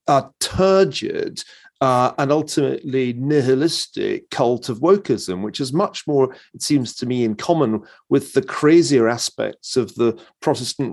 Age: 40-59